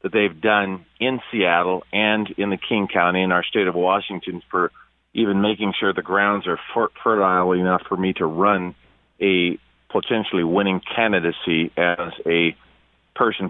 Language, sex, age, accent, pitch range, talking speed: English, male, 40-59, American, 85-100 Hz, 155 wpm